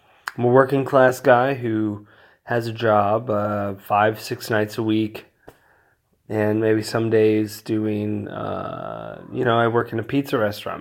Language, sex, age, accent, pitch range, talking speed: English, male, 20-39, American, 110-125 Hz, 160 wpm